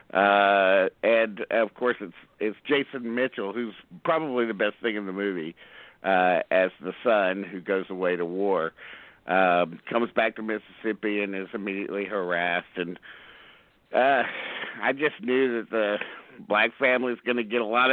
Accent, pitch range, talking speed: American, 95-130 Hz, 165 wpm